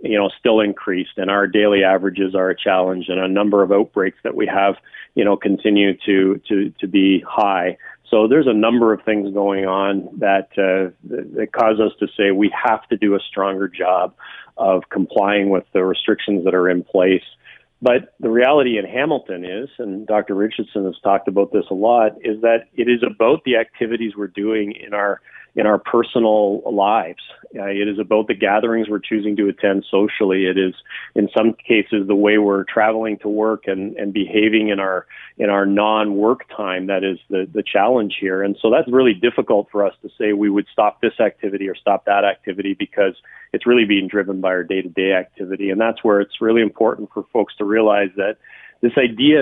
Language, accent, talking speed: English, American, 200 wpm